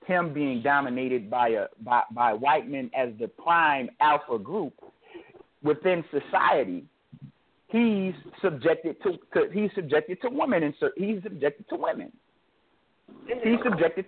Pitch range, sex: 150-215 Hz, male